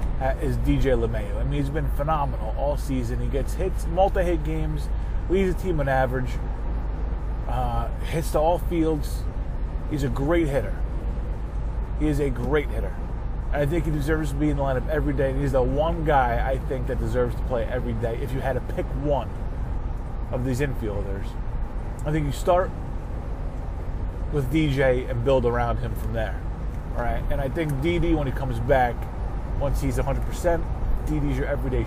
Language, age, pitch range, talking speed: English, 30-49, 115-145 Hz, 180 wpm